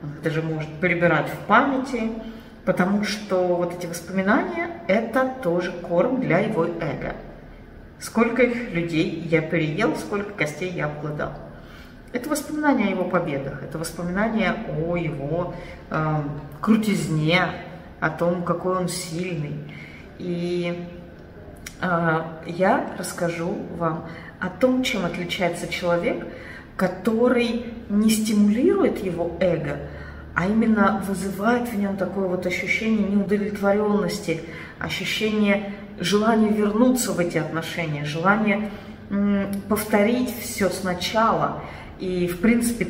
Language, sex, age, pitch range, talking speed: Russian, female, 30-49, 165-210 Hz, 110 wpm